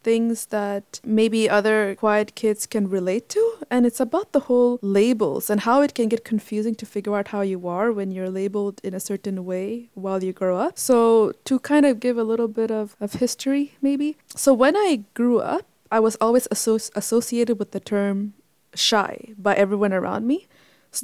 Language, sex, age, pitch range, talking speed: English, female, 20-39, 200-250 Hz, 195 wpm